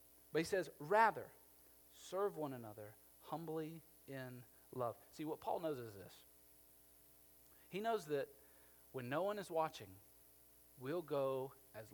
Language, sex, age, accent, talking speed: English, male, 40-59, American, 135 wpm